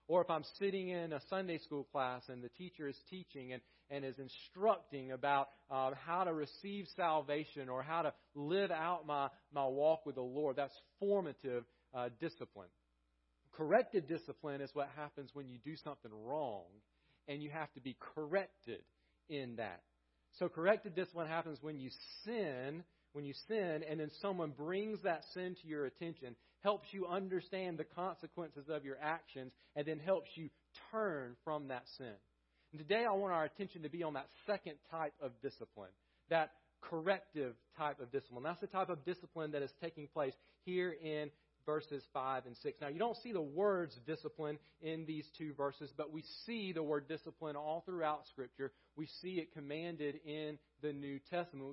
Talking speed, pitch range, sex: 180 wpm, 135-170 Hz, male